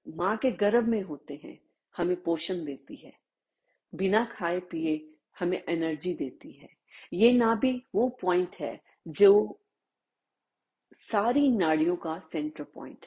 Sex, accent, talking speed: female, native, 135 wpm